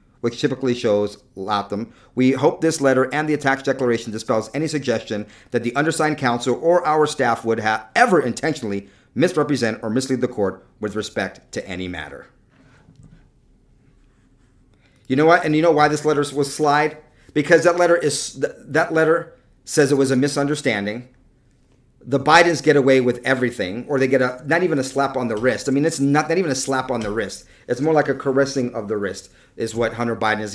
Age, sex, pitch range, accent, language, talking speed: 40-59, male, 115-145 Hz, American, English, 195 wpm